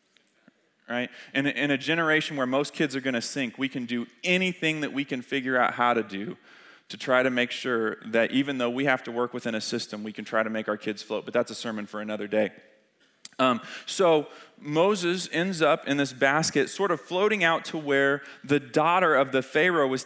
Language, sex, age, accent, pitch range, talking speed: English, male, 30-49, American, 125-175 Hz, 220 wpm